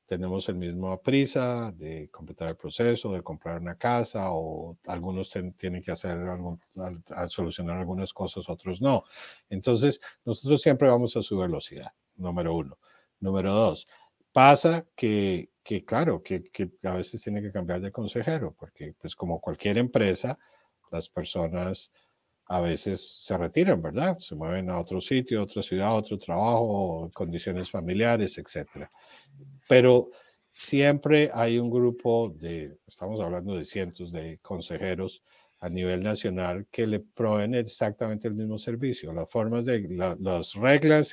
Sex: male